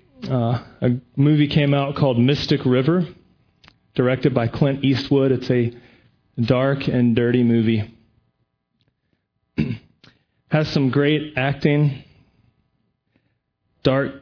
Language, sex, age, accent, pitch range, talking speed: English, male, 30-49, American, 125-145 Hz, 100 wpm